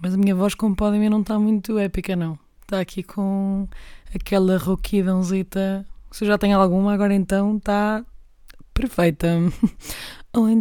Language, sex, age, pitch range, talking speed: Portuguese, female, 20-39, 175-200 Hz, 155 wpm